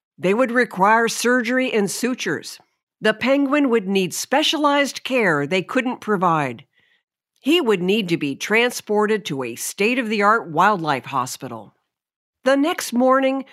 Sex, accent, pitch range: female, American, 195-275 Hz